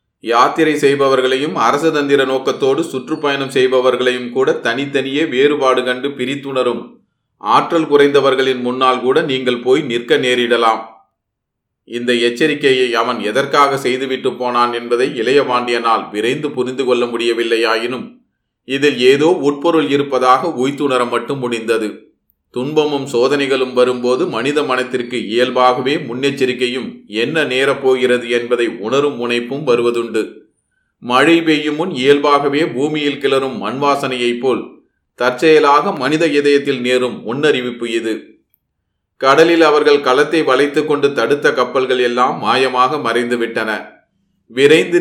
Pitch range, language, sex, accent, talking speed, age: 120-145 Hz, Tamil, male, native, 105 wpm, 30-49